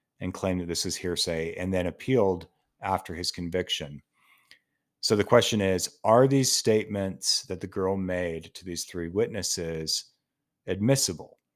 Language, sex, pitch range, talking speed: English, male, 85-110 Hz, 145 wpm